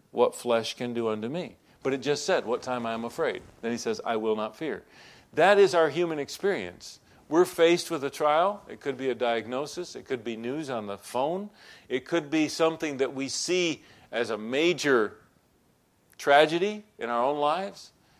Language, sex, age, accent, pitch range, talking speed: English, male, 50-69, American, 130-175 Hz, 195 wpm